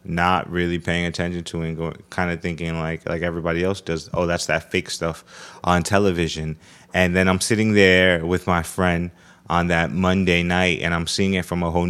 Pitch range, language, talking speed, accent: 85-95 Hz, English, 205 wpm, American